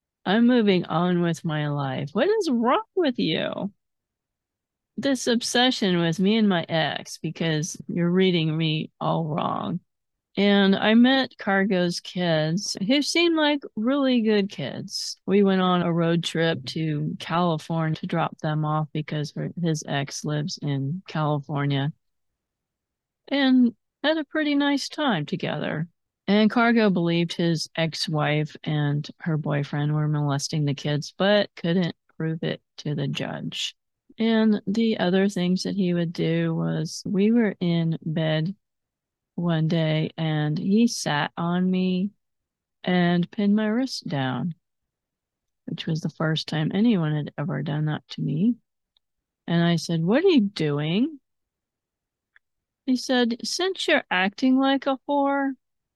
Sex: female